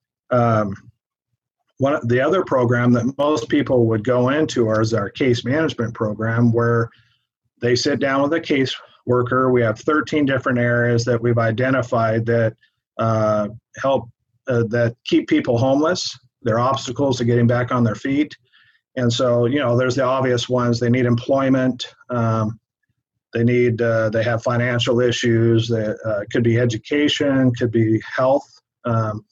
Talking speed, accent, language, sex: 160 wpm, American, English, male